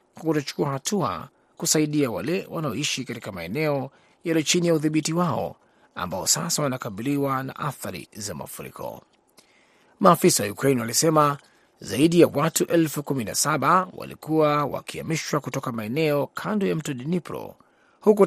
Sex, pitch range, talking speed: male, 125-160 Hz, 120 wpm